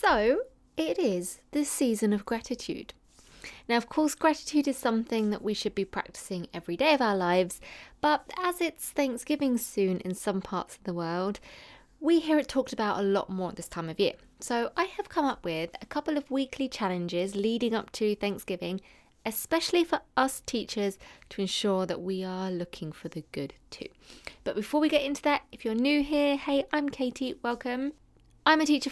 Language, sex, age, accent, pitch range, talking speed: English, female, 20-39, British, 185-260 Hz, 195 wpm